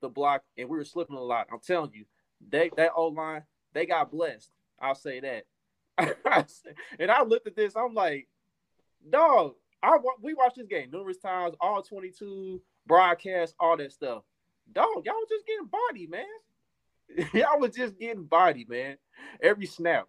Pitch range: 115-195 Hz